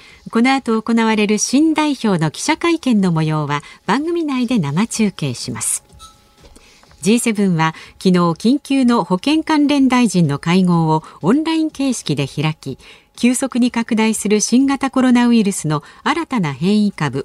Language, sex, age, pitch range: Japanese, female, 50-69, 160-250 Hz